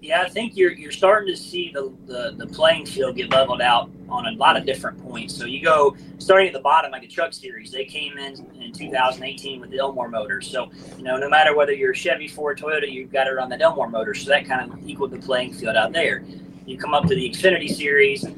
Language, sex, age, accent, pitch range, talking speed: English, male, 30-49, American, 130-170 Hz, 250 wpm